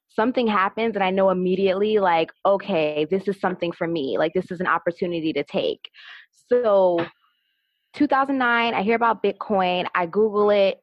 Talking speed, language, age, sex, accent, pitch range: 160 wpm, English, 20-39, female, American, 180-220 Hz